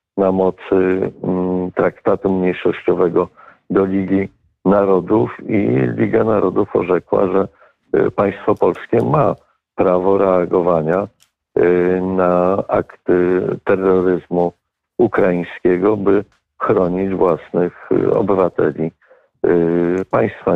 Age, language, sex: 50-69, Polish, male